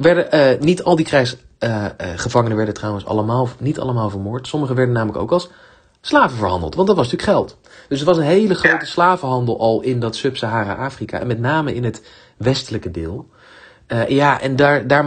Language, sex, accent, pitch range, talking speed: Dutch, male, Dutch, 115-150 Hz, 185 wpm